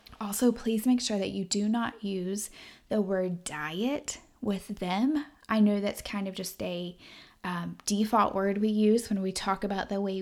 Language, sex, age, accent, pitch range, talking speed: English, female, 10-29, American, 190-225 Hz, 190 wpm